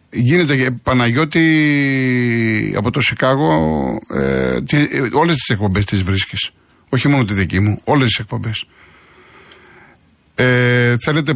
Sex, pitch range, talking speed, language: male, 110-140 Hz, 105 wpm, Greek